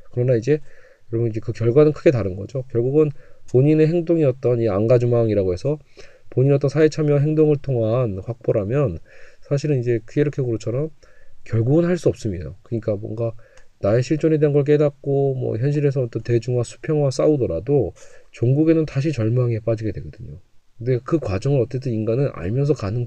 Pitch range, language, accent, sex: 110-140 Hz, Korean, native, male